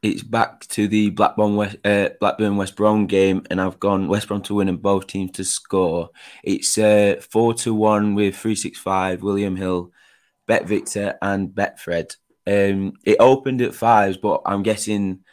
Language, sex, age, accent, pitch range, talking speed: English, male, 20-39, British, 95-105 Hz, 180 wpm